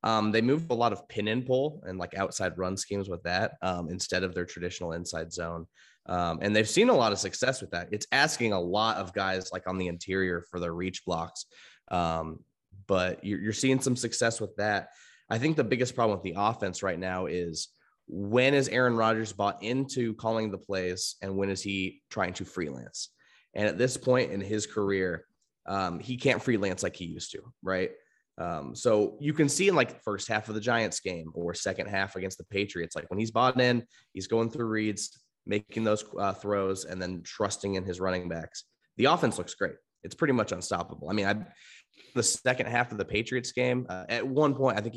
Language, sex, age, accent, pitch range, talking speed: English, male, 20-39, American, 90-120 Hz, 215 wpm